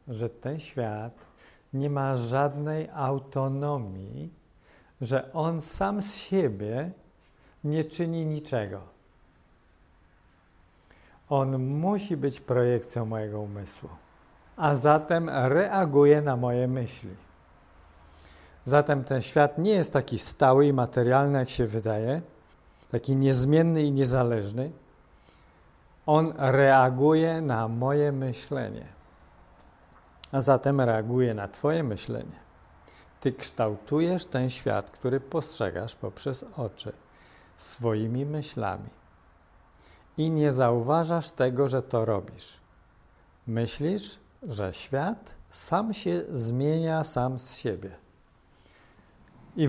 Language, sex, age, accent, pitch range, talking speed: English, male, 50-69, Polish, 100-145 Hz, 100 wpm